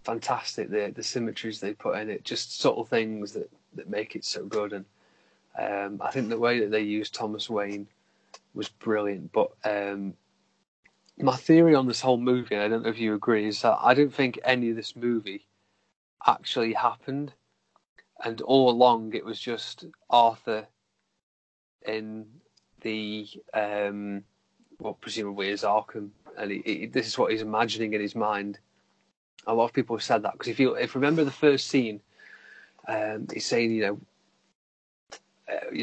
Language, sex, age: English, male, 30-49